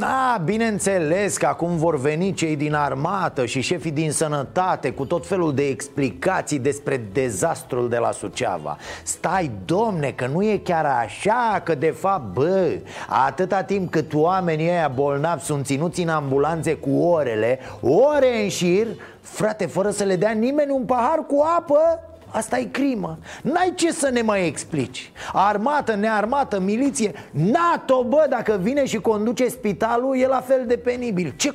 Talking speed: 160 wpm